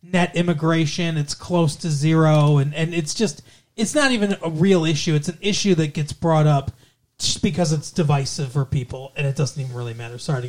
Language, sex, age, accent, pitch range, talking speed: English, male, 30-49, American, 140-195 Hz, 210 wpm